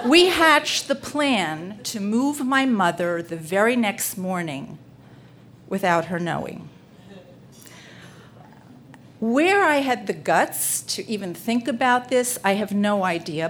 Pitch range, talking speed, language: 175-230 Hz, 130 wpm, English